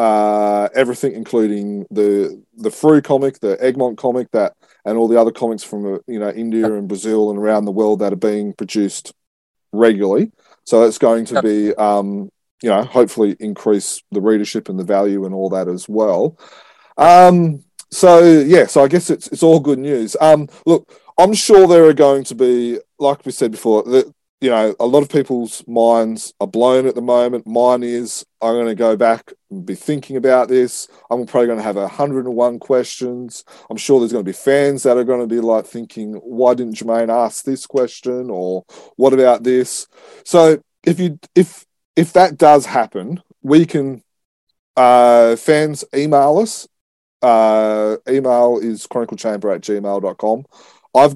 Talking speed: 180 wpm